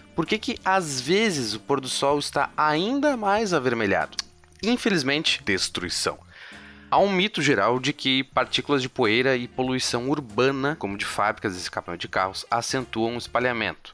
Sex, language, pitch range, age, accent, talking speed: male, Portuguese, 100-135 Hz, 20-39, Brazilian, 160 wpm